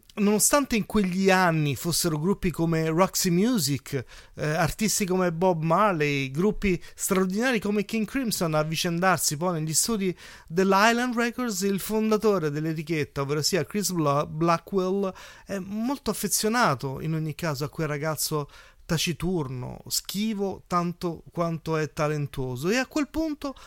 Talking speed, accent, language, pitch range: 130 wpm, native, Italian, 150-200 Hz